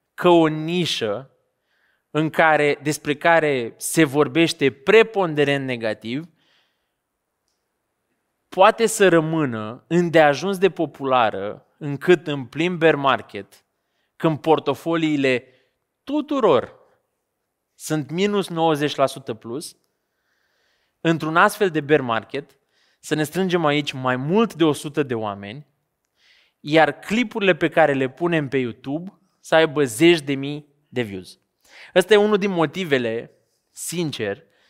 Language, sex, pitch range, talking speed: Romanian, male, 135-180 Hz, 110 wpm